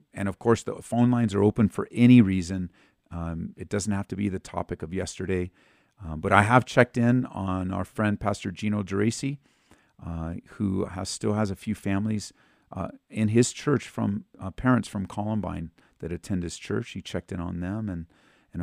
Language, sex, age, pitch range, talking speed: English, male, 40-59, 90-115 Hz, 195 wpm